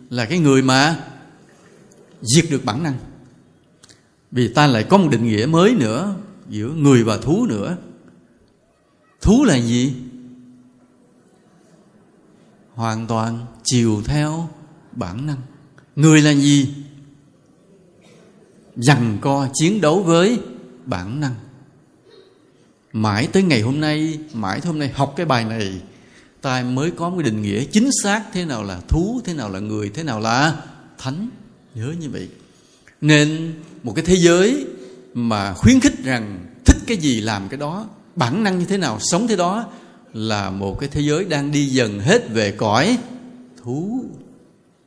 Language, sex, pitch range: Vietnamese, male, 120-170 Hz